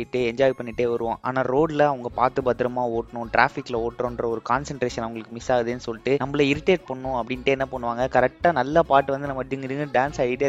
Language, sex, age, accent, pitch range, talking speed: Tamil, male, 20-39, native, 120-140 Hz, 175 wpm